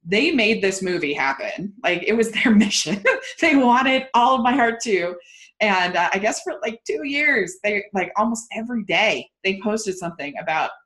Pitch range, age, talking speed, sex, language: 190-275 Hz, 20-39, 190 wpm, female, English